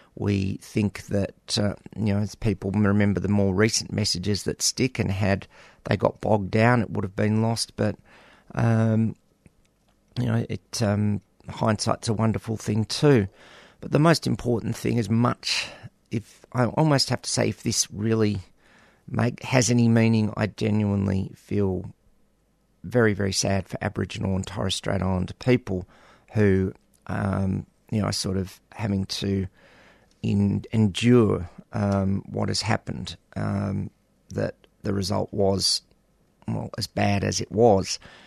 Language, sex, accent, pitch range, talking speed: English, male, Australian, 95-115 Hz, 150 wpm